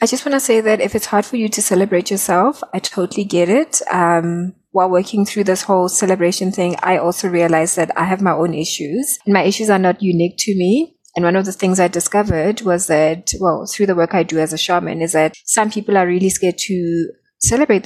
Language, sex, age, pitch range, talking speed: English, female, 20-39, 165-200 Hz, 235 wpm